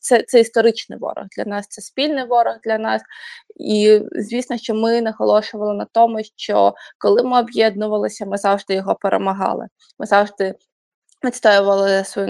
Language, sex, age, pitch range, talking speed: Ukrainian, female, 20-39, 205-240 Hz, 145 wpm